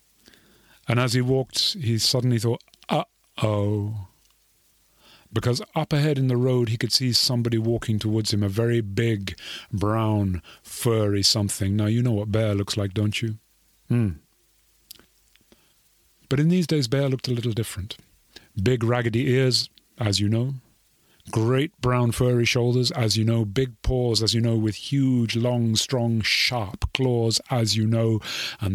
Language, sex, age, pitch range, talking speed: English, male, 30-49, 105-125 Hz, 155 wpm